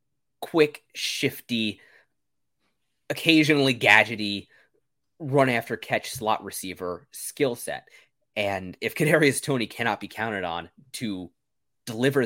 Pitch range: 105-140 Hz